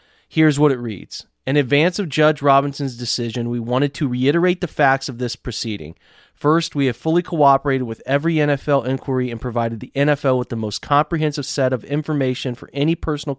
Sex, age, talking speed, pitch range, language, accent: male, 30-49, 190 wpm, 120-150 Hz, English, American